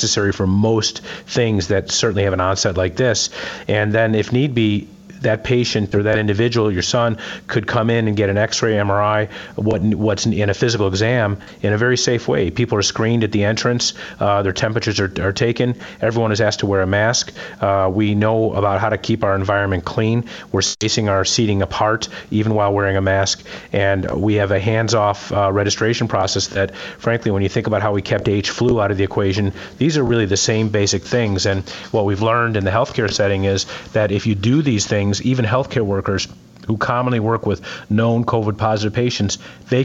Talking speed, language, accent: 205 wpm, English, American